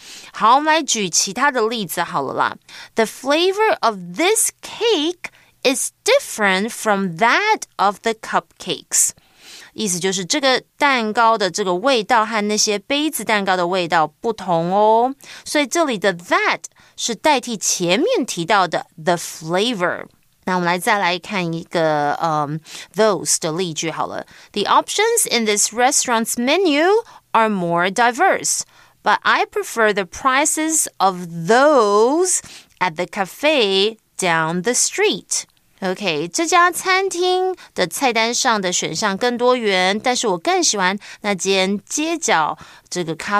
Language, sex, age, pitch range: Chinese, female, 30-49, 180-280 Hz